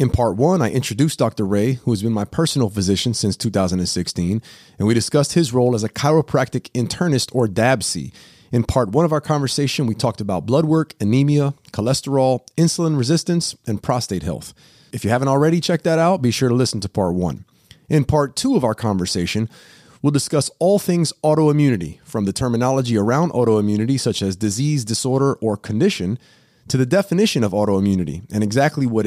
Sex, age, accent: male, 30-49, American